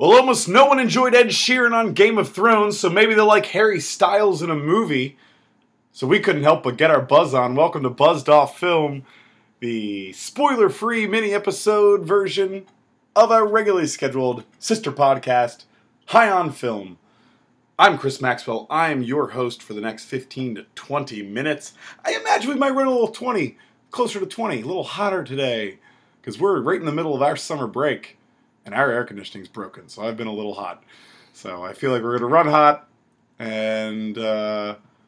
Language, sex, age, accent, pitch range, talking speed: English, male, 30-49, American, 120-200 Hz, 185 wpm